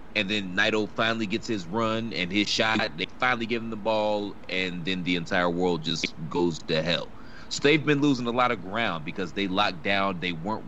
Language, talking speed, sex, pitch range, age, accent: English, 220 wpm, male, 95-120 Hz, 30-49, American